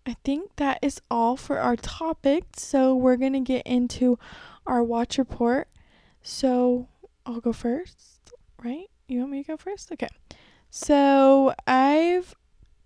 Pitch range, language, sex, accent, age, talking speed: 240-275 Hz, English, female, American, 10-29, 140 wpm